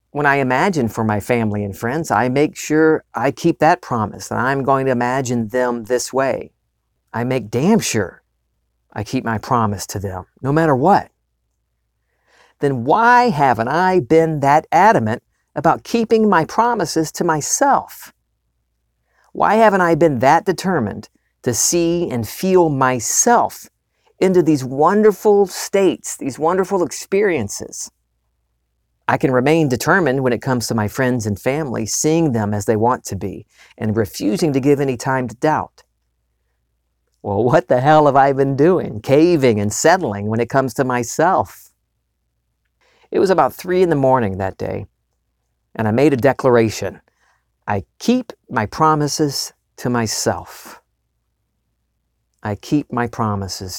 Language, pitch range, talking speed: English, 100-155 Hz, 150 wpm